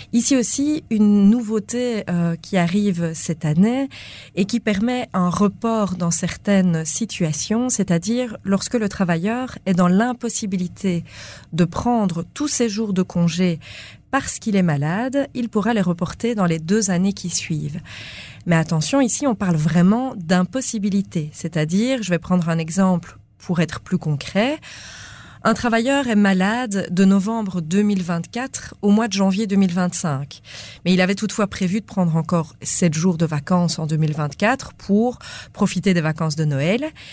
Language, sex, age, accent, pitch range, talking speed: French, female, 30-49, French, 165-220 Hz, 150 wpm